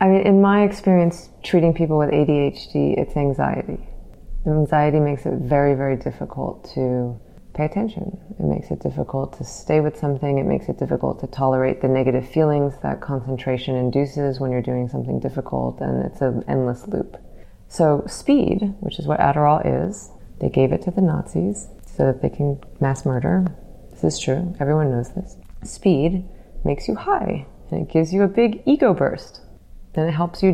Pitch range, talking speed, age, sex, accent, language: 135-180 Hz, 180 wpm, 30-49, female, American, English